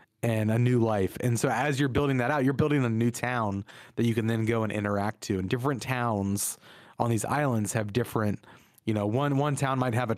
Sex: male